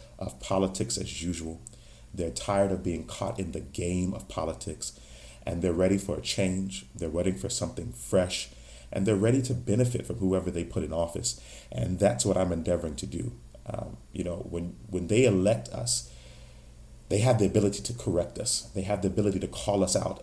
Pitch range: 85-105 Hz